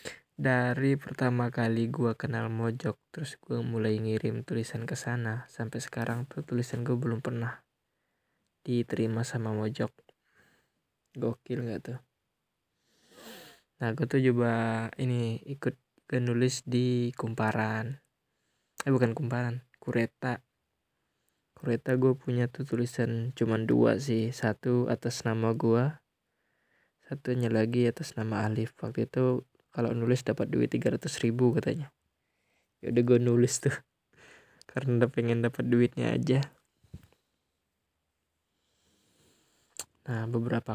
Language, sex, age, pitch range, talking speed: Indonesian, male, 10-29, 115-130 Hz, 115 wpm